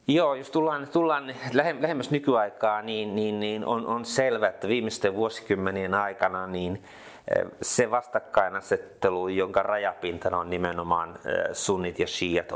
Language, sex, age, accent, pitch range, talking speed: Finnish, male, 30-49, native, 95-115 Hz, 125 wpm